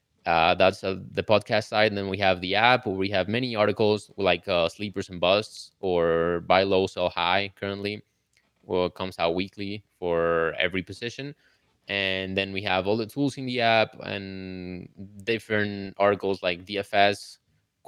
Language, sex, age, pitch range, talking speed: English, male, 20-39, 90-105 Hz, 170 wpm